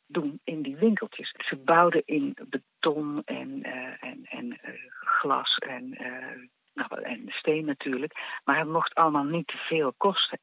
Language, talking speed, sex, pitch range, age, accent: Dutch, 155 wpm, female, 160-255 Hz, 50-69, Dutch